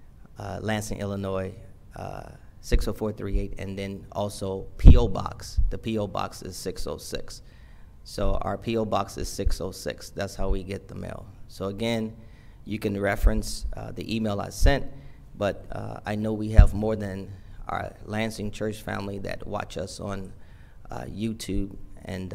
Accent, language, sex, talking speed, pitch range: American, English, male, 150 wpm, 95-110 Hz